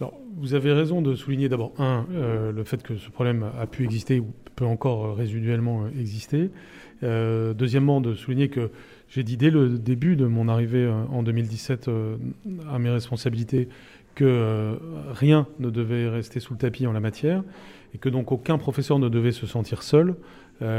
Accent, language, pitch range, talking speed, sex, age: French, French, 120-150 Hz, 180 wpm, male, 30-49